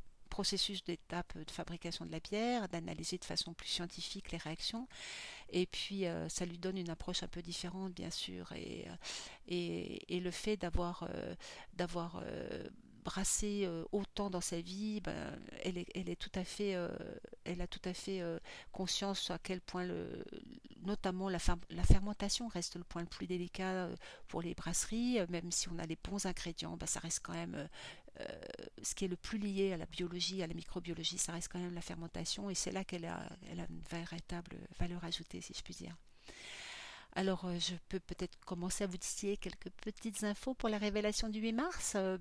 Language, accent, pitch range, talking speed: French, French, 175-205 Hz, 190 wpm